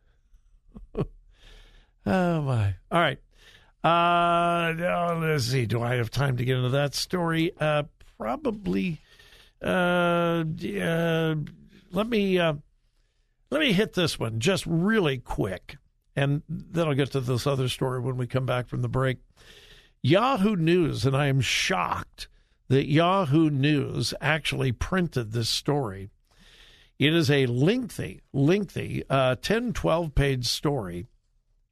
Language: English